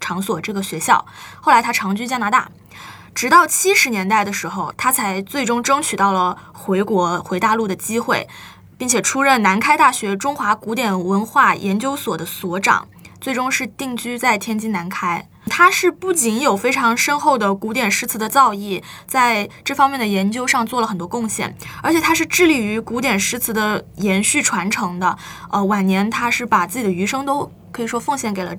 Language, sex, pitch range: Chinese, female, 200-270 Hz